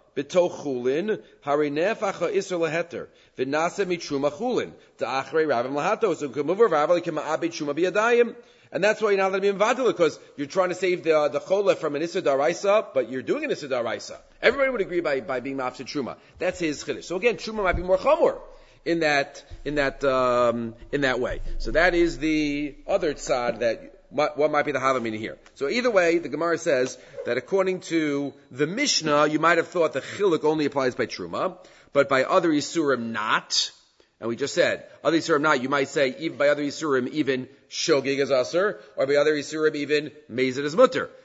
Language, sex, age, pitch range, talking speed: English, male, 40-59, 140-190 Hz, 175 wpm